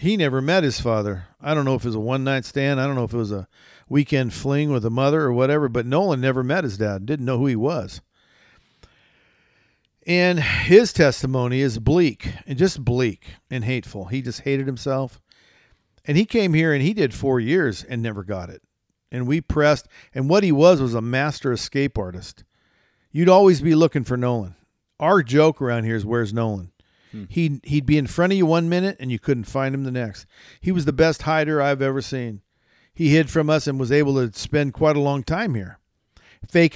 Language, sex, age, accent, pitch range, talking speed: English, male, 50-69, American, 120-150 Hz, 210 wpm